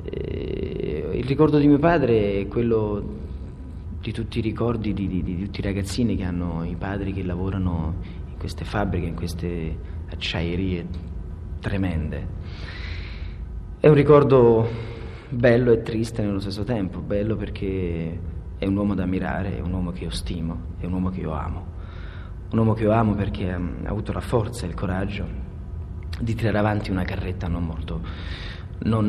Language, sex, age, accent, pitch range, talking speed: Italian, male, 40-59, native, 85-105 Hz, 165 wpm